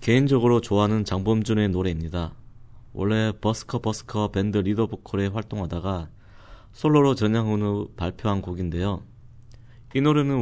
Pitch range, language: 95-115 Hz, Korean